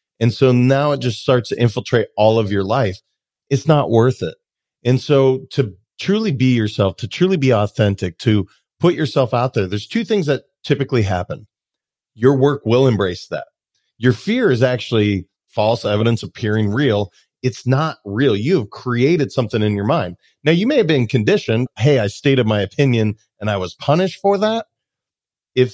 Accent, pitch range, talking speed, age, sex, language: American, 110-145 Hz, 180 wpm, 40-59, male, English